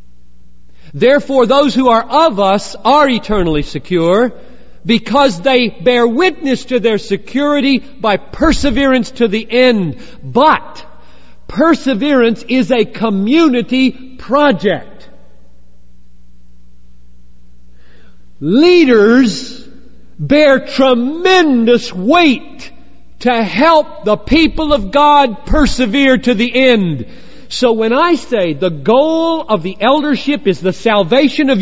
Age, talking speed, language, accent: 50-69, 100 wpm, English, American